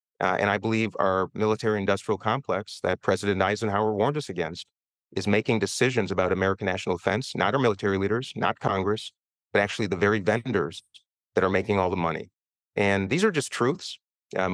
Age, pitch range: 40-59, 95-115 Hz